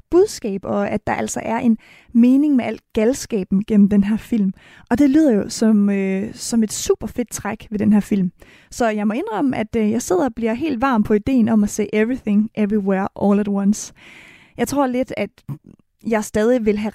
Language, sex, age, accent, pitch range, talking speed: Danish, female, 20-39, native, 210-255 Hz, 200 wpm